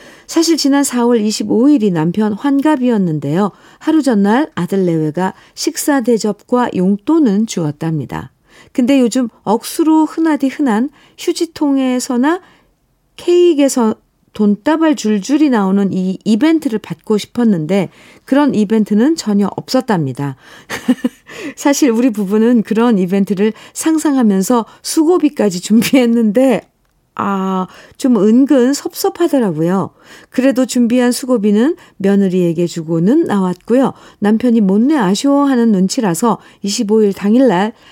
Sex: female